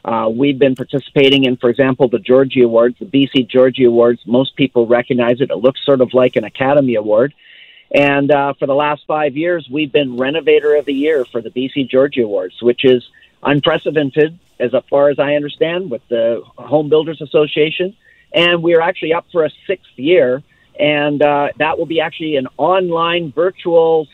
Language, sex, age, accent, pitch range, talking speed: English, male, 50-69, American, 135-165 Hz, 185 wpm